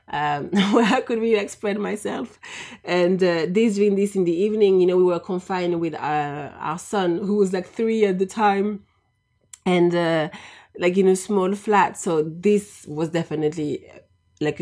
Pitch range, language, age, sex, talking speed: 150-190 Hz, English, 30-49, female, 170 wpm